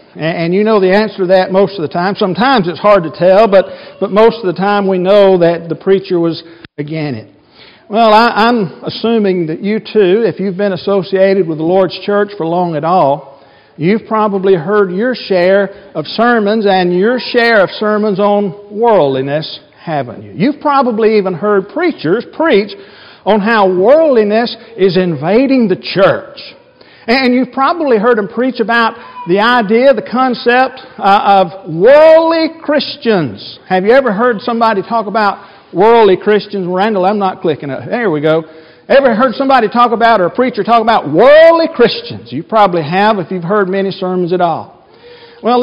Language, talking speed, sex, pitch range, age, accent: English, 175 wpm, male, 185-235 Hz, 50-69, American